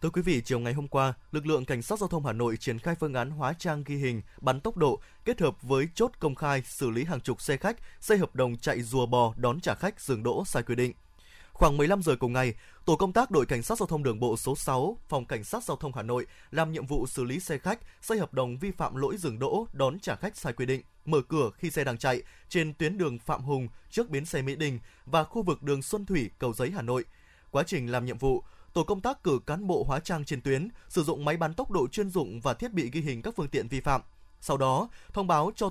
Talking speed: 270 wpm